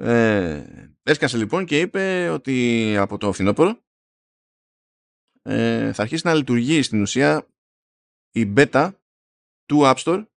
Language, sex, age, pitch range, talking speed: Greek, male, 20-39, 100-140 Hz, 120 wpm